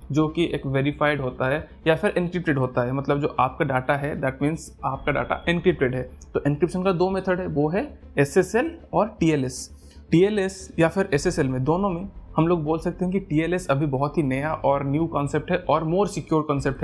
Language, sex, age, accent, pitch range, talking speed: Hindi, male, 20-39, native, 140-180 Hz, 210 wpm